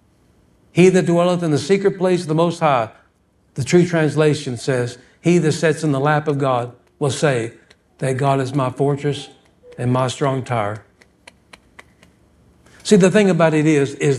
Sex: male